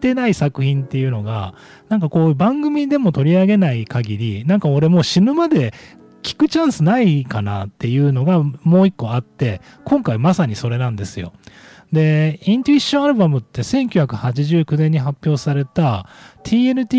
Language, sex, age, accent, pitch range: Japanese, male, 40-59, native, 110-180 Hz